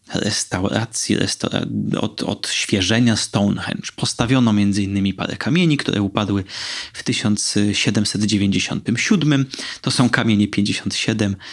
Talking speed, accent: 95 wpm, native